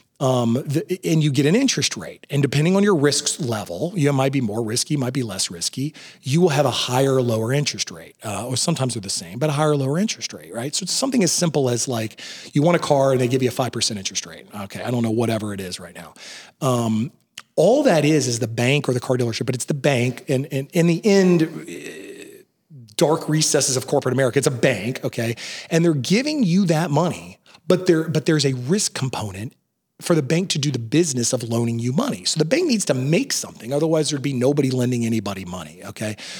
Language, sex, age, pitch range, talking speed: English, male, 40-59, 125-165 Hz, 230 wpm